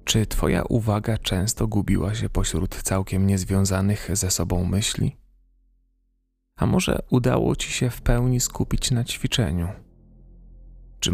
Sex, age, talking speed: male, 30-49, 125 wpm